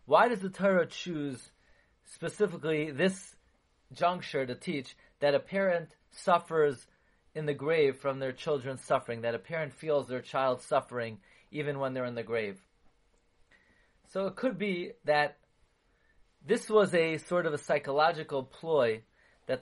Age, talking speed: 30-49, 145 wpm